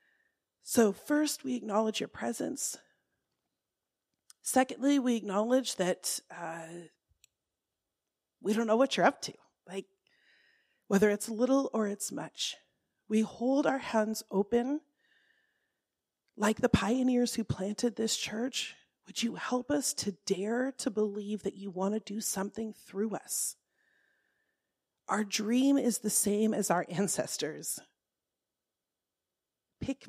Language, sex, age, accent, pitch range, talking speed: English, female, 40-59, American, 205-250 Hz, 125 wpm